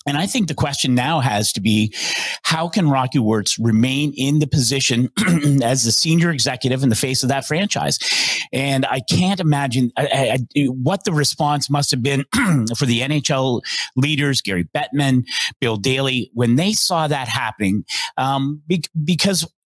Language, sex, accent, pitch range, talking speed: English, male, American, 120-145 Hz, 160 wpm